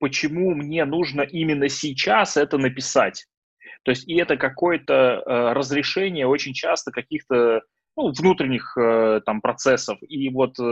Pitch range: 115-155 Hz